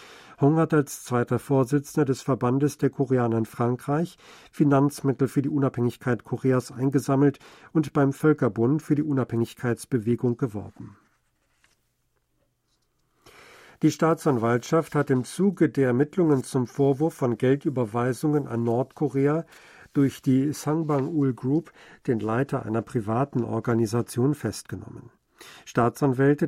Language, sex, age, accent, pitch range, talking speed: German, male, 50-69, German, 120-145 Hz, 110 wpm